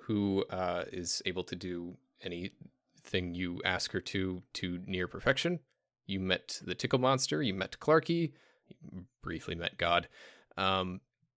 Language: English